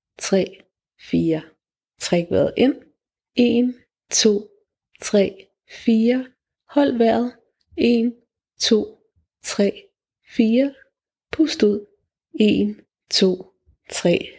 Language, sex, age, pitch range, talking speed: Danish, female, 30-49, 195-245 Hz, 85 wpm